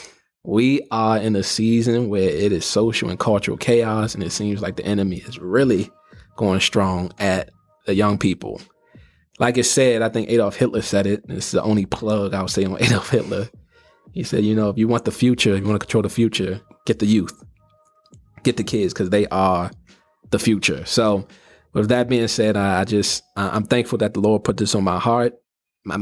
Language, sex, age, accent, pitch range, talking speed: English, male, 20-39, American, 100-120 Hz, 210 wpm